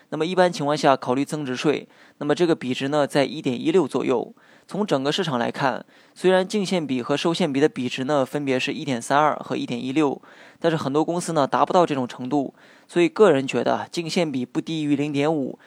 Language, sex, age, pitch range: Chinese, male, 20-39, 135-165 Hz